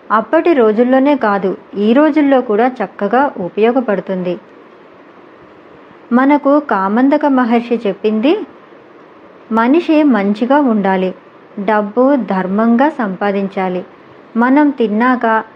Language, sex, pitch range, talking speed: Telugu, male, 210-275 Hz, 75 wpm